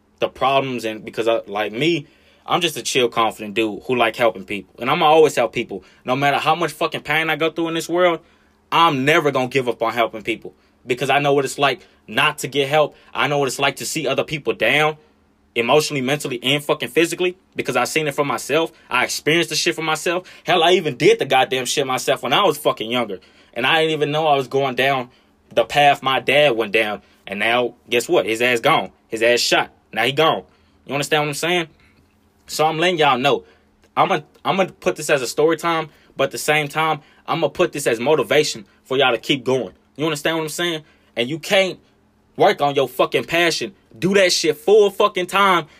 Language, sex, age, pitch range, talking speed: English, male, 20-39, 130-165 Hz, 235 wpm